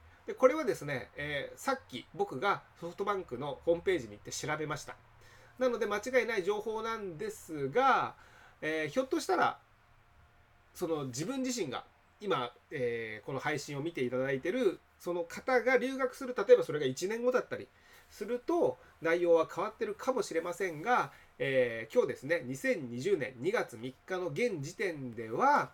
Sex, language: male, Japanese